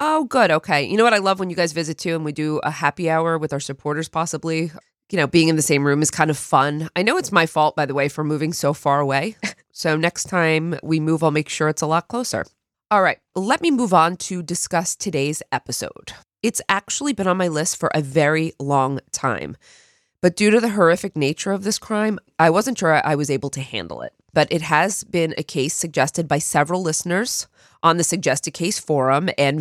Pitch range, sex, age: 145-180 Hz, female, 20-39